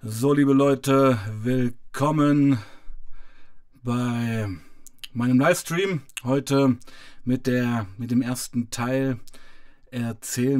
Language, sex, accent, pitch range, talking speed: German, male, German, 120-135 Hz, 80 wpm